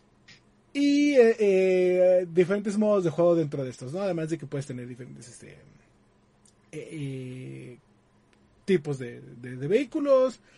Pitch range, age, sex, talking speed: 150-210 Hz, 30-49, male, 140 wpm